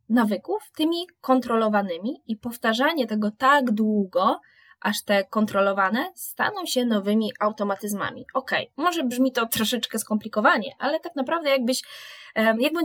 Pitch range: 220-275 Hz